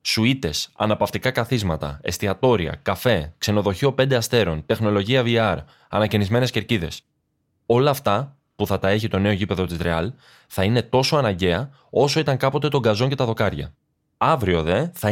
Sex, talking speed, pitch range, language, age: male, 150 wpm, 100-130 Hz, Greek, 20-39